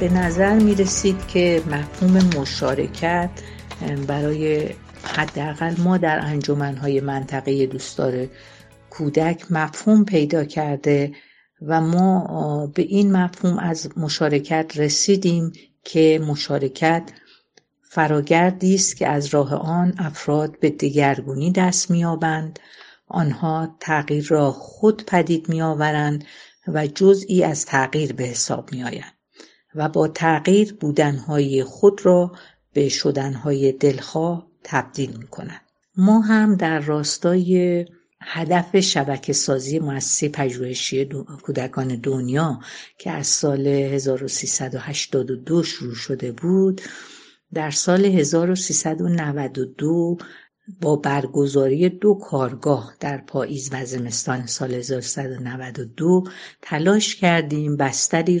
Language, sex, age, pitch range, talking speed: Persian, female, 50-69, 140-175 Hz, 100 wpm